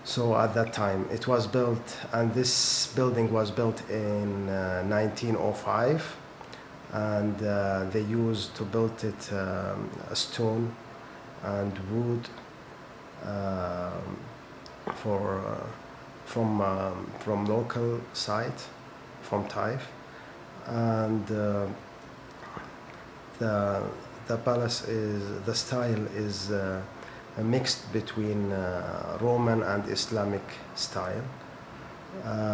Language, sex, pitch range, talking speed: English, male, 100-120 Hz, 100 wpm